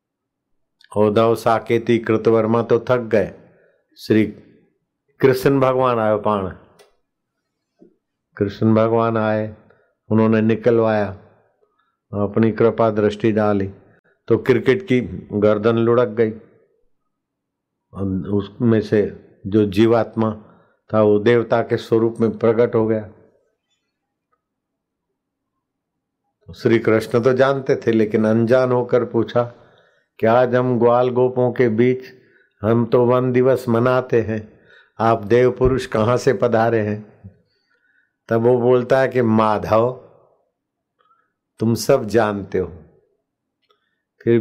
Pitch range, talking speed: 110-125 Hz, 105 wpm